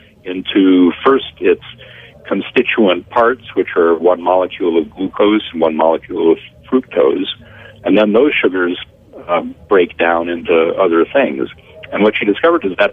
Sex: male